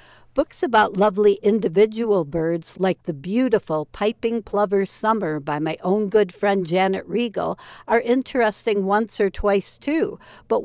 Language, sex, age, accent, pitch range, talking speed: English, female, 60-79, American, 185-225 Hz, 140 wpm